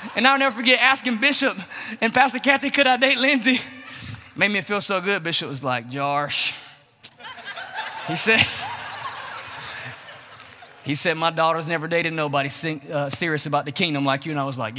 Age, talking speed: 20-39, 165 wpm